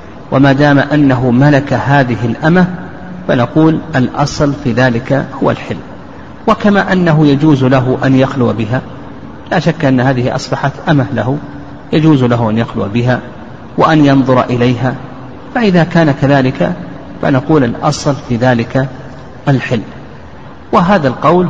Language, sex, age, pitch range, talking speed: Arabic, male, 50-69, 125-155 Hz, 125 wpm